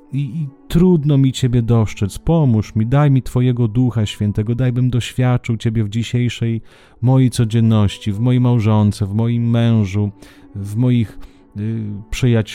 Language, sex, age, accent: Italian, male, 30-49, Polish